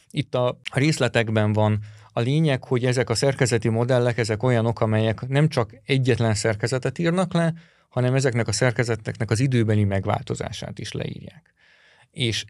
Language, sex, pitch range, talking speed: Hungarian, male, 110-135 Hz, 145 wpm